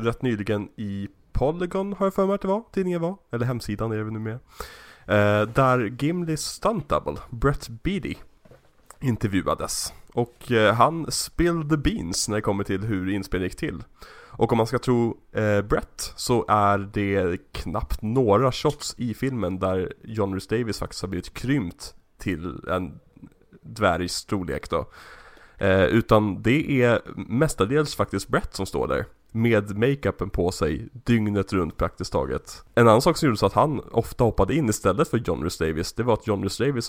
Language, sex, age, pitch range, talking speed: Swedish, male, 30-49, 100-125 Hz, 170 wpm